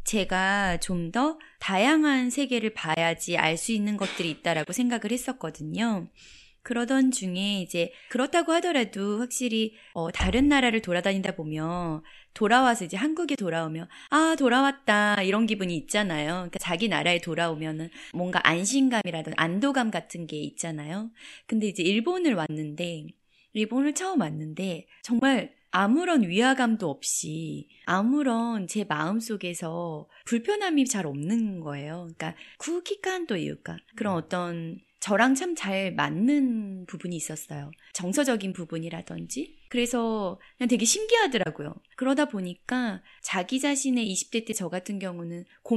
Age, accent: 20-39, Korean